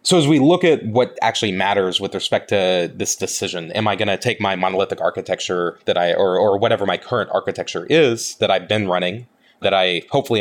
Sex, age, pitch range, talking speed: male, 20-39, 95-130 Hz, 215 wpm